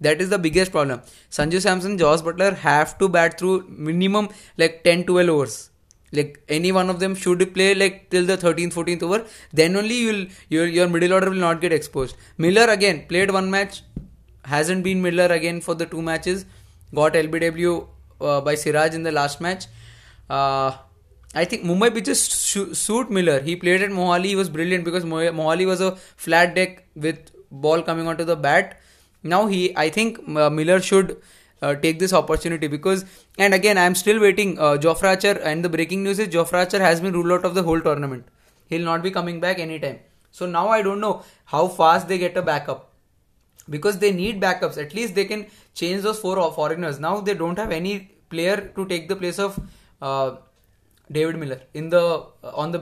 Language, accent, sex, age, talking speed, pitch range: English, Indian, male, 20-39, 200 wpm, 155-190 Hz